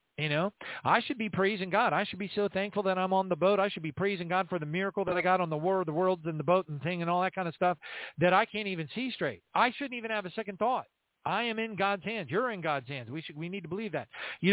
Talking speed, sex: 310 wpm, male